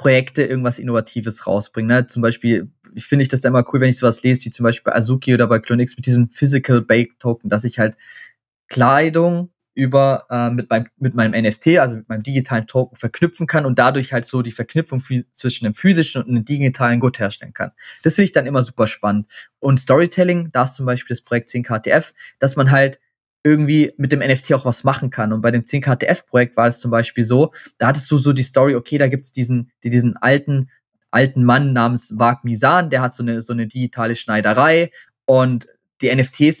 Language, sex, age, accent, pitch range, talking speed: German, male, 20-39, German, 120-140 Hz, 205 wpm